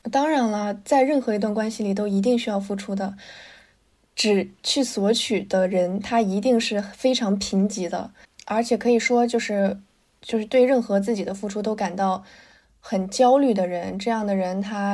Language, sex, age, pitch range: Chinese, female, 20-39, 200-250 Hz